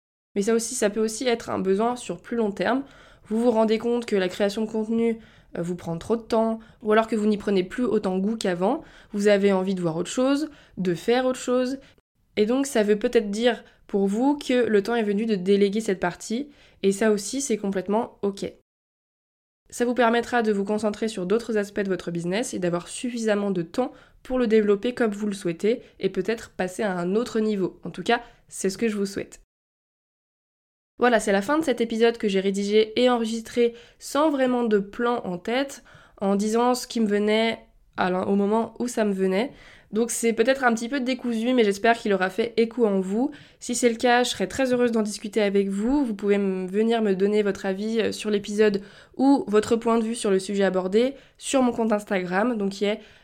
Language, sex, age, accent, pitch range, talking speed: French, female, 20-39, French, 200-240 Hz, 220 wpm